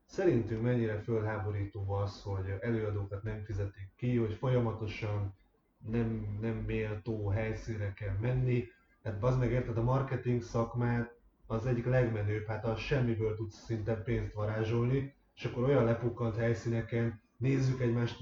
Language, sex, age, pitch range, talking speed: Hungarian, male, 30-49, 110-130 Hz, 135 wpm